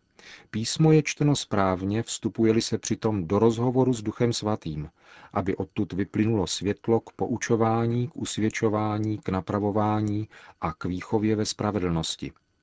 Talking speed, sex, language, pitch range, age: 130 wpm, male, Czech, 95-115 Hz, 40-59